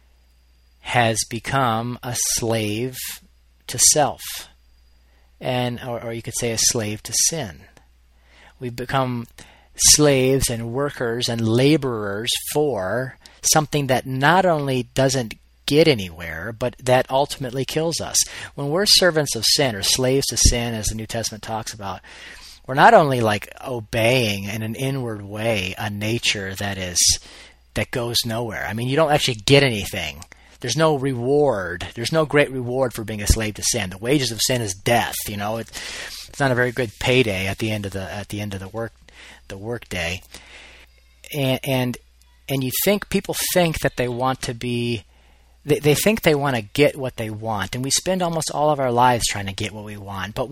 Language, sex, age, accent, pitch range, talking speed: English, male, 30-49, American, 100-135 Hz, 180 wpm